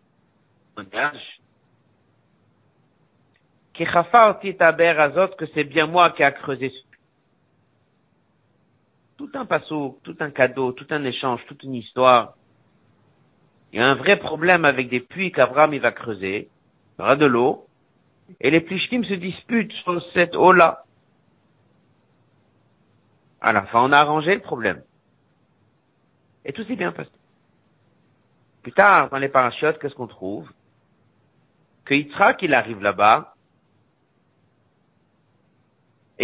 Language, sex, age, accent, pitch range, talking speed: French, male, 50-69, French, 130-195 Hz, 125 wpm